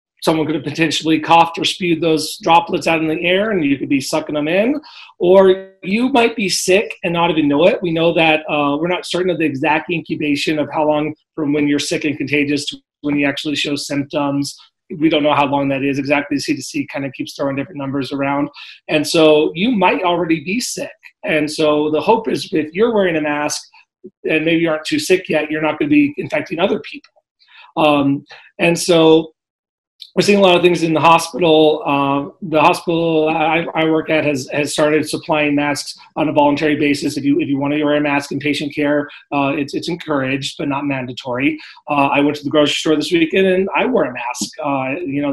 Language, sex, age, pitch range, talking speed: English, male, 30-49, 145-170 Hz, 220 wpm